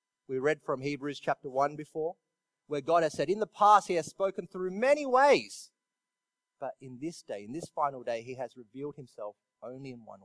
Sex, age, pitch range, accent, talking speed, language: male, 30-49, 130-185 Hz, Australian, 205 wpm, English